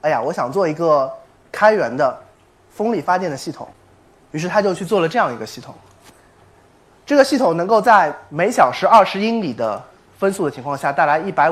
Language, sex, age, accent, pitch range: Chinese, male, 20-39, native, 130-205 Hz